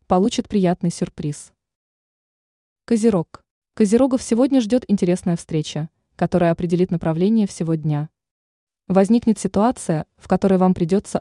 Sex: female